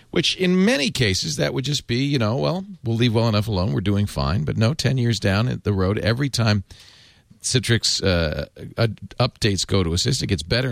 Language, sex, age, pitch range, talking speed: English, male, 40-59, 90-125 Hz, 215 wpm